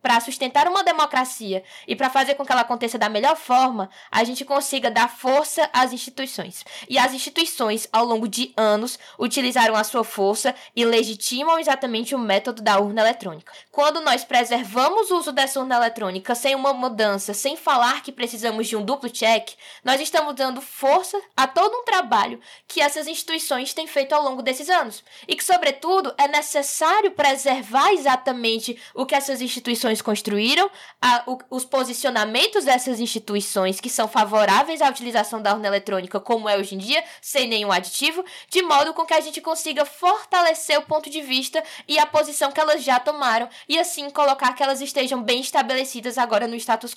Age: 10-29